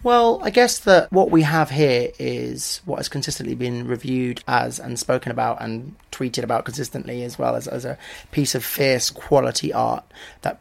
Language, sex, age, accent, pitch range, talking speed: English, male, 30-49, British, 115-135 Hz, 185 wpm